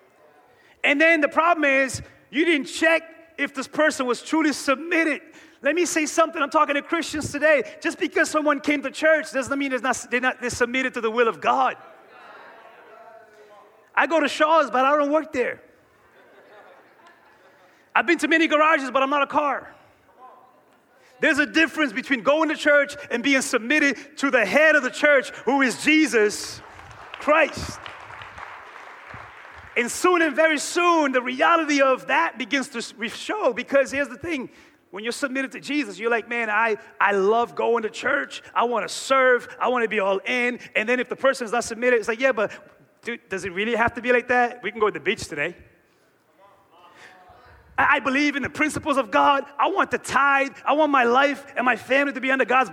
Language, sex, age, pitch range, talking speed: English, male, 30-49, 245-305 Hz, 190 wpm